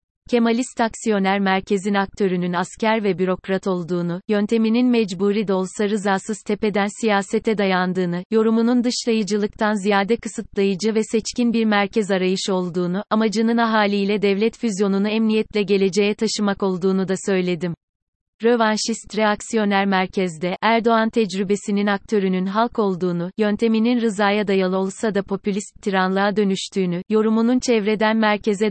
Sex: female